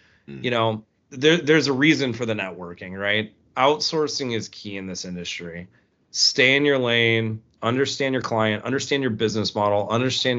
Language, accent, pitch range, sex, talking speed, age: English, American, 100-130 Hz, male, 155 wpm, 30-49